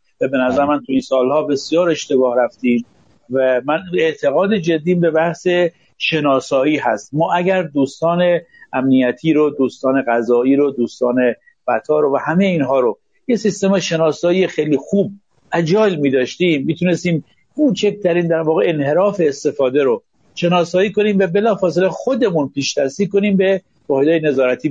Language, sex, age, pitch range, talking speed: Persian, male, 50-69, 135-190 Hz, 135 wpm